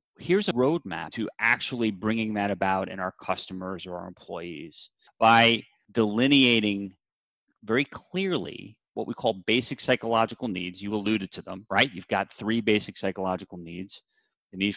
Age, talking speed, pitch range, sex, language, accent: 30-49, 150 wpm, 105-150 Hz, male, English, American